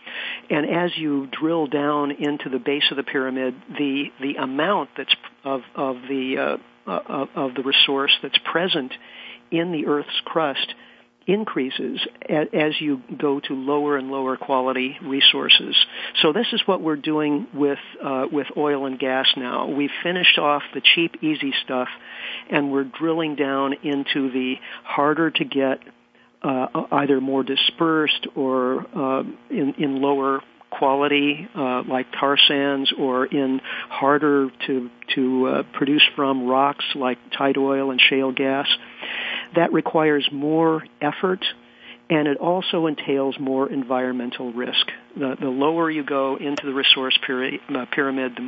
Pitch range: 135-150 Hz